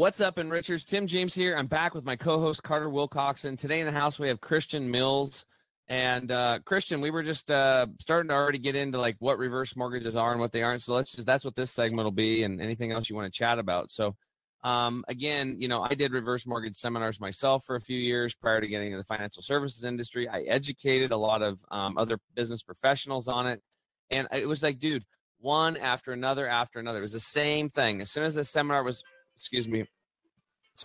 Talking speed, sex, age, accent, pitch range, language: 230 wpm, male, 30-49, American, 110-145 Hz, English